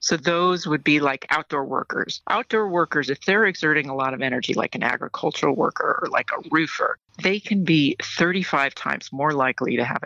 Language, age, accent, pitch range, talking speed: English, 50-69, American, 155-205 Hz, 195 wpm